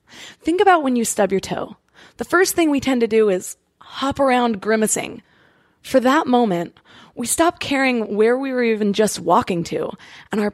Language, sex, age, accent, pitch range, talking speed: English, female, 20-39, American, 210-265 Hz, 190 wpm